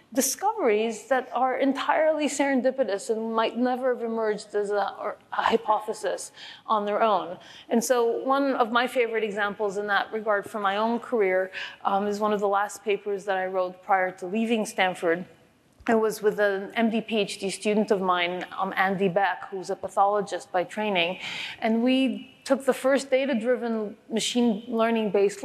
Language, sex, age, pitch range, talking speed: English, female, 30-49, 195-240 Hz, 165 wpm